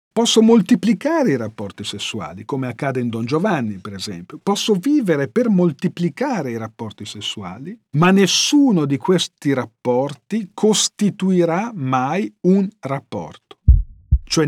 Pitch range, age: 135-190 Hz, 50-69